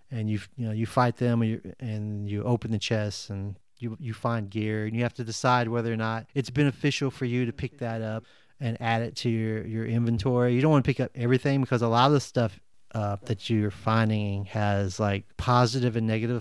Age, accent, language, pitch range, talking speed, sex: 30-49, American, English, 105-125 Hz, 235 wpm, male